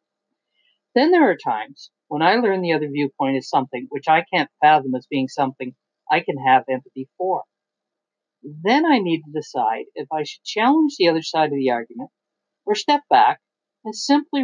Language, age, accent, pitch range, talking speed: English, 50-69, American, 145-210 Hz, 185 wpm